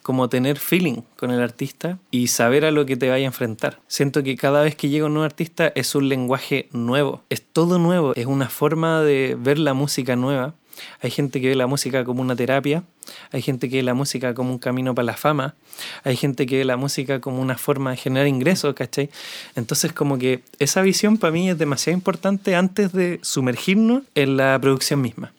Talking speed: 215 wpm